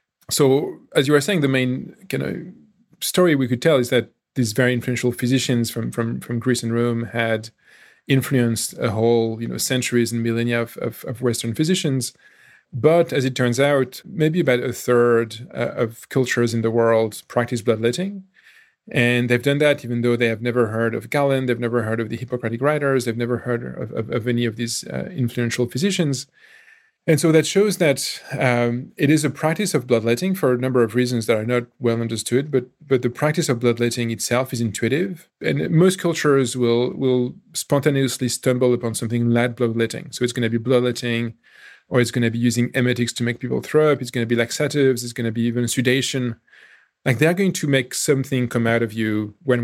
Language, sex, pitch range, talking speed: English, male, 120-140 Hz, 200 wpm